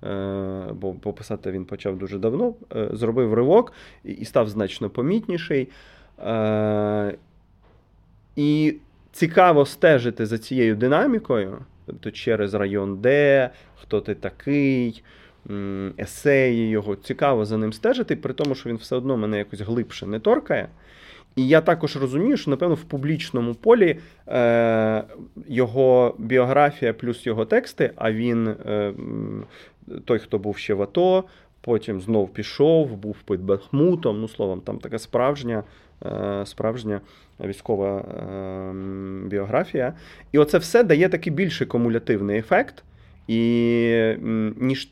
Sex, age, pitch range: male, 30-49, 100-140 Hz